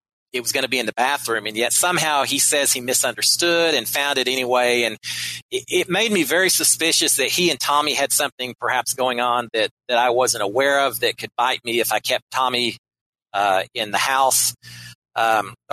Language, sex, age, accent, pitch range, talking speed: English, male, 40-59, American, 115-150 Hz, 205 wpm